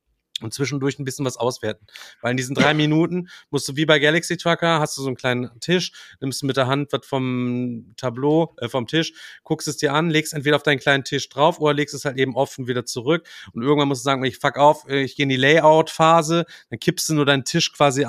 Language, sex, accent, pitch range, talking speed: German, male, German, 115-140 Hz, 240 wpm